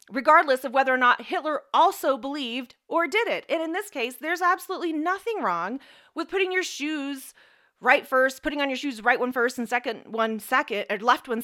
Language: English